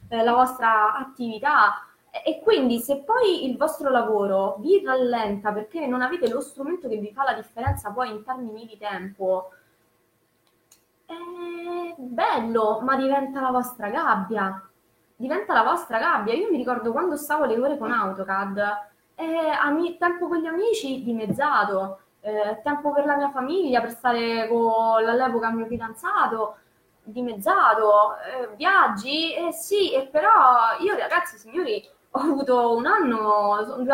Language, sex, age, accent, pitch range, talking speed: Italian, female, 20-39, native, 220-295 Hz, 145 wpm